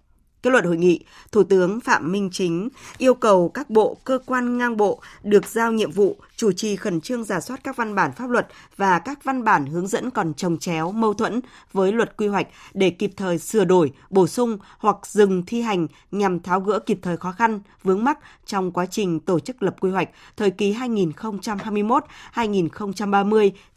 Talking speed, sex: 195 wpm, female